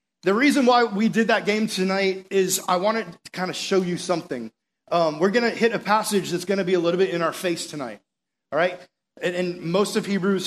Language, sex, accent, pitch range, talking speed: English, male, American, 170-205 Hz, 240 wpm